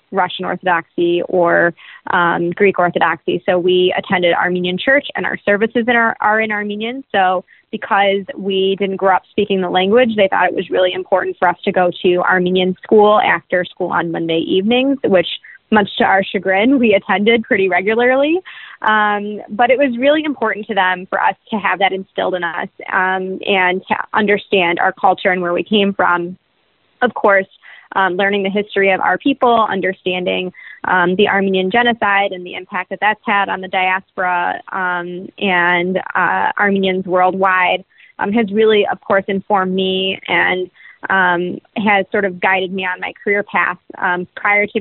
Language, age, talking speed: English, 20-39, 175 wpm